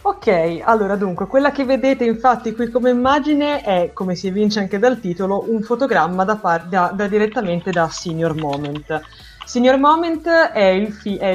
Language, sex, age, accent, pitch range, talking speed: Italian, female, 20-39, native, 180-245 Hz, 175 wpm